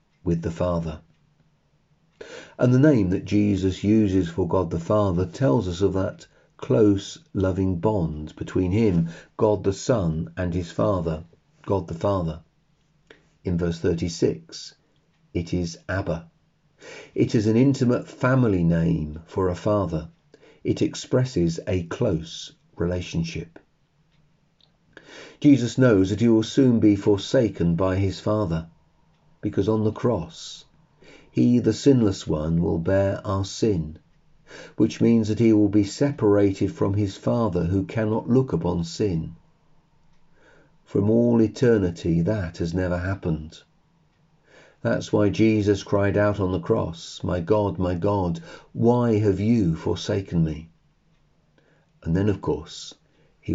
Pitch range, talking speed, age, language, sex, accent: 85-115 Hz, 130 wpm, 40-59, English, male, British